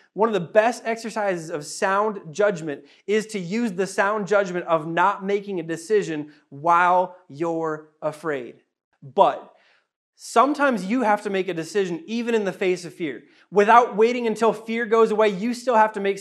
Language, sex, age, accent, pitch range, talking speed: English, male, 20-39, American, 185-225 Hz, 175 wpm